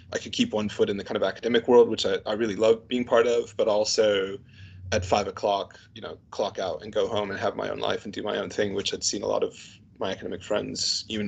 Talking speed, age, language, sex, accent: 270 wpm, 20-39, English, male, American